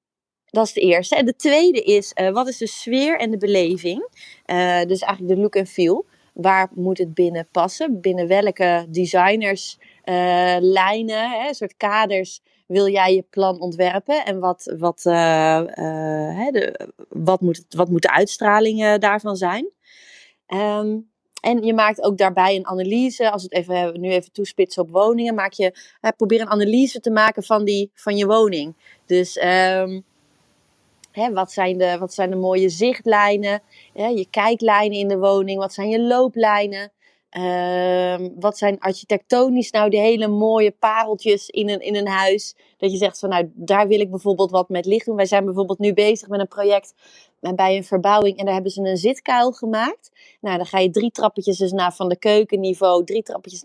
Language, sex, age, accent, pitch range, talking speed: Dutch, female, 30-49, Dutch, 185-215 Hz, 175 wpm